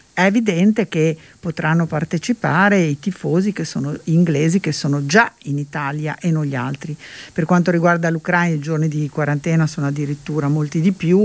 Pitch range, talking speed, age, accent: 150-180 Hz, 170 wpm, 50-69, native